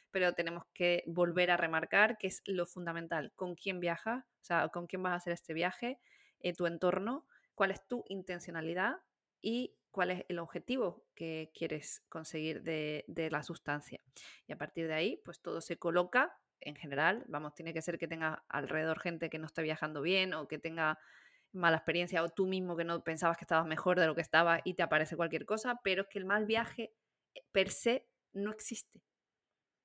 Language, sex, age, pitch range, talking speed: Spanish, female, 20-39, 165-195 Hz, 195 wpm